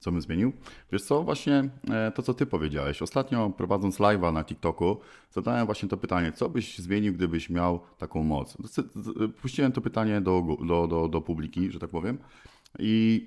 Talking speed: 170 wpm